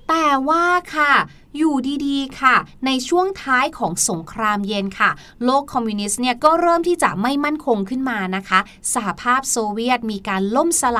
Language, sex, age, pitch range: Thai, female, 20-39, 225-300 Hz